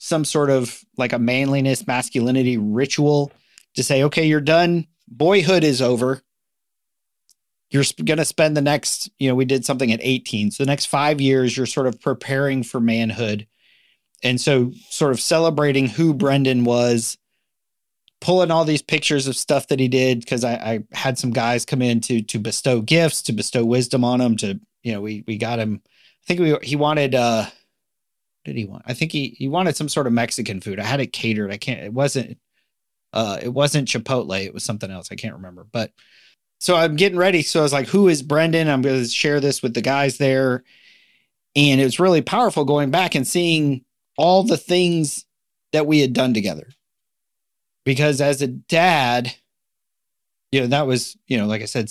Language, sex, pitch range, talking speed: English, male, 120-150 Hz, 195 wpm